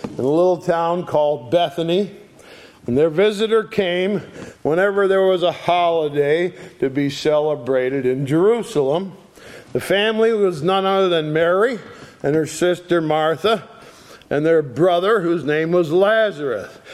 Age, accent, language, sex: 50-69, American, English, male